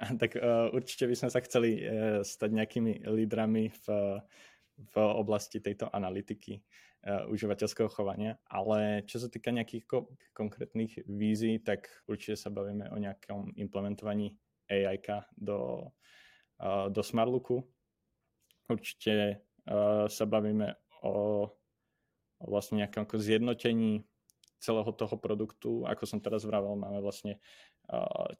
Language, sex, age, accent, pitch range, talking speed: Czech, male, 20-39, native, 105-115 Hz, 115 wpm